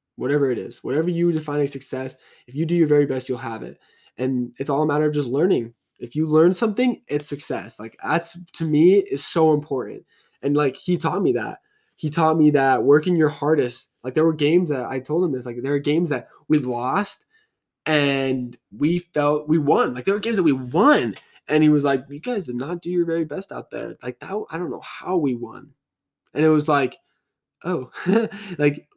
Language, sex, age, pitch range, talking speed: English, male, 10-29, 130-175 Hz, 220 wpm